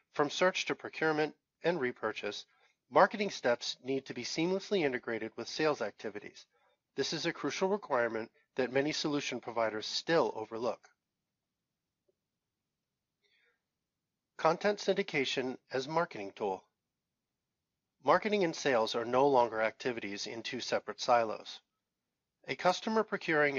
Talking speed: 115 wpm